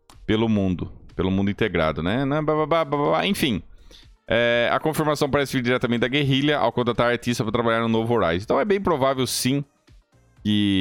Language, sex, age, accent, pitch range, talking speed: English, male, 20-39, Brazilian, 95-125 Hz, 165 wpm